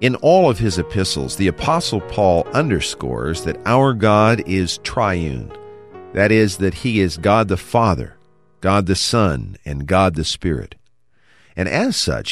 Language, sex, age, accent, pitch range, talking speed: English, male, 50-69, American, 85-120 Hz, 155 wpm